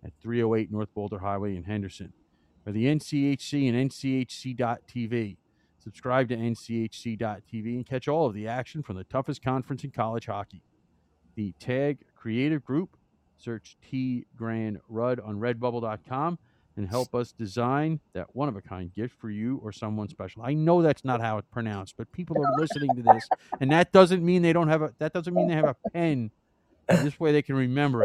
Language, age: English, 40-59